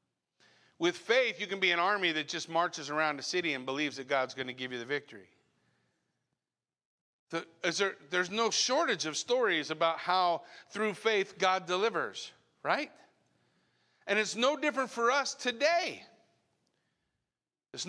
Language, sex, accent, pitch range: English, male, American, 140-215 Hz